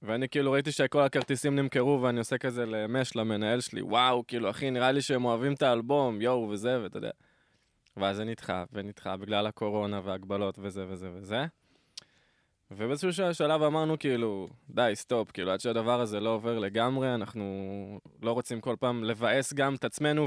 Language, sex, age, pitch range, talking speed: Hebrew, male, 20-39, 110-145 Hz, 180 wpm